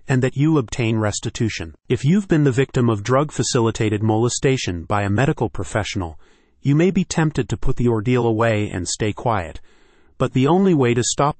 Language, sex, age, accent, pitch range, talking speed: English, male, 30-49, American, 110-135 Hz, 185 wpm